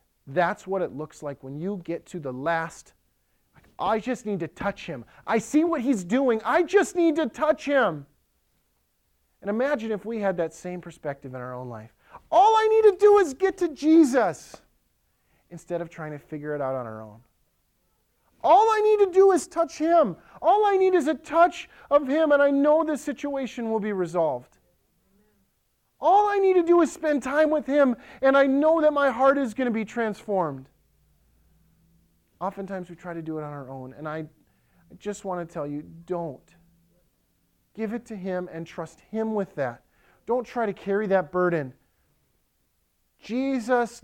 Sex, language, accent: male, English, American